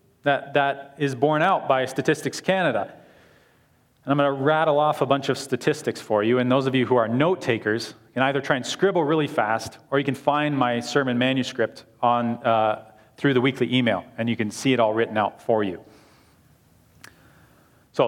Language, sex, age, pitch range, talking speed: English, male, 40-59, 120-150 Hz, 195 wpm